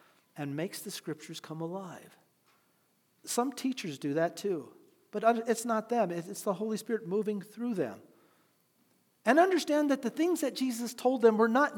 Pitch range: 200-275 Hz